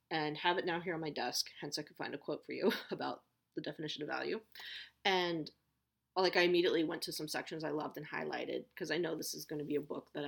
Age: 30-49